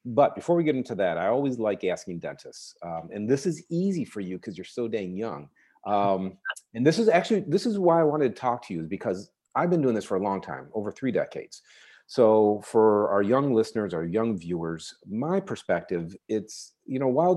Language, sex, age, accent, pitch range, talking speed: English, male, 40-59, American, 100-150 Hz, 220 wpm